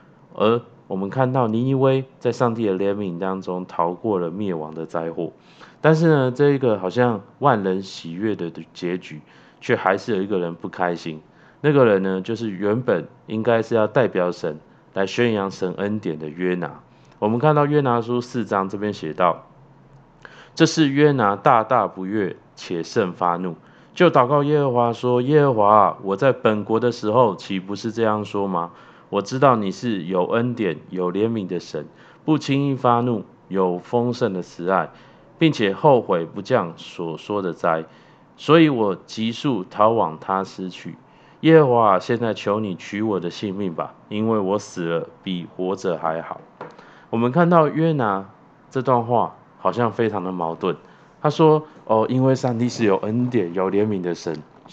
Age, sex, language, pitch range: 20-39, male, Chinese, 95-125 Hz